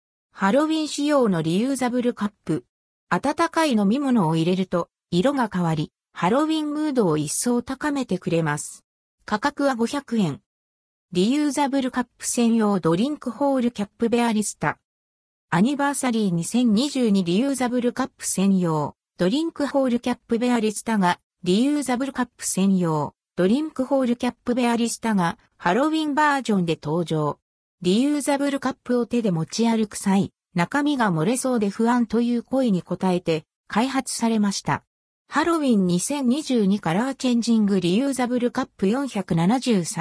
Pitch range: 185-260 Hz